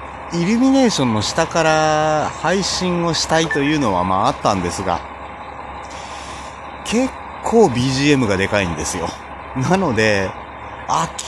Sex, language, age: male, Japanese, 30-49